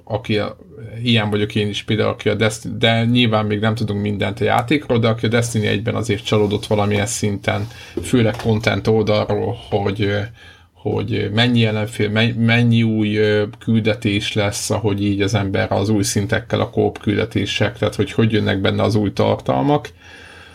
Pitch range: 105-120 Hz